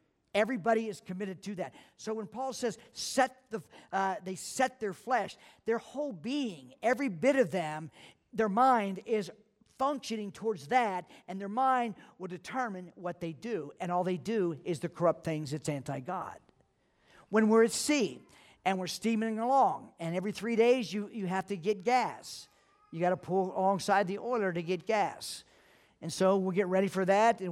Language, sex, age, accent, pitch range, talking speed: English, male, 50-69, American, 180-225 Hz, 180 wpm